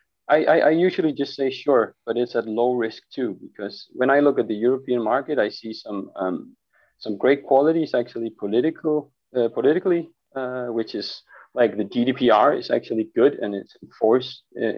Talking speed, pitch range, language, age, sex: 175 wpm, 110-130 Hz, English, 30-49, male